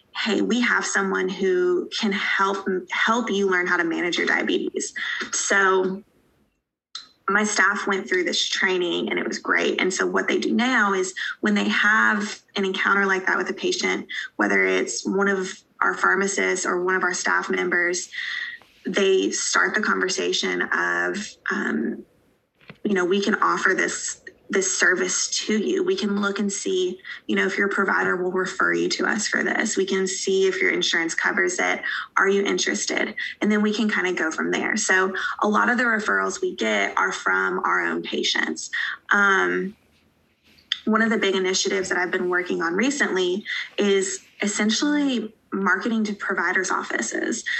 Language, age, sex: English, 20-39, female